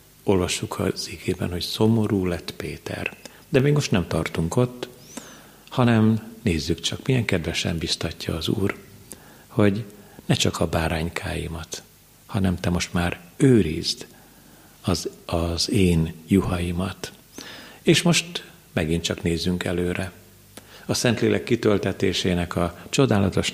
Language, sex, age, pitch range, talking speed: Hungarian, male, 50-69, 90-110 Hz, 115 wpm